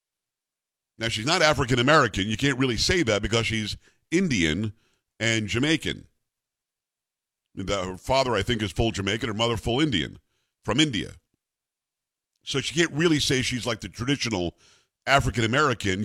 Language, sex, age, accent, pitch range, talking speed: English, male, 50-69, American, 110-135 Hz, 140 wpm